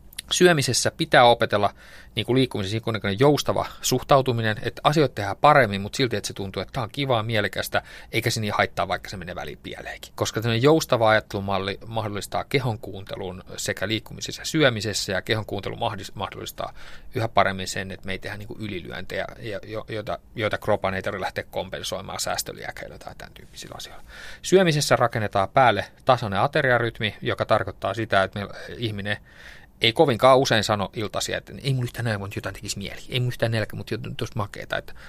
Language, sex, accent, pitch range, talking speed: Finnish, male, native, 100-125 Hz, 170 wpm